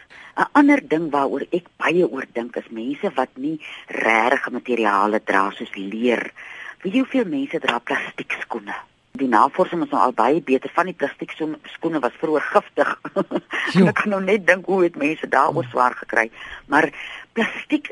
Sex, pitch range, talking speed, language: female, 125-190 Hz, 165 wpm, Dutch